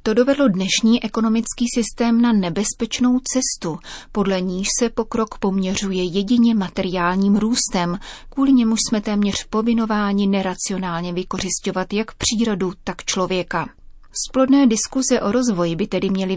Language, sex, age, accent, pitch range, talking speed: Czech, female, 30-49, native, 185-220 Hz, 125 wpm